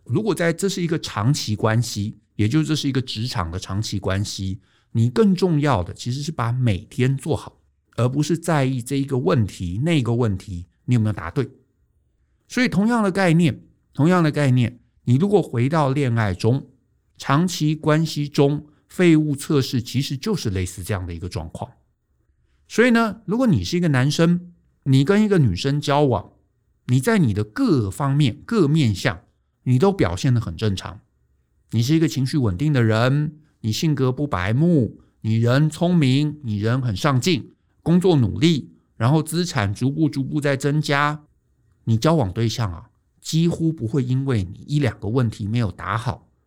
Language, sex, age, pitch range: Chinese, male, 50-69, 110-150 Hz